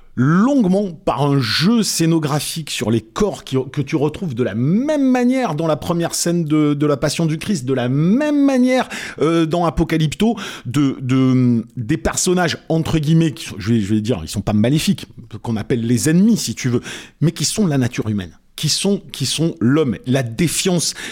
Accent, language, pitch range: French, French, 140-190 Hz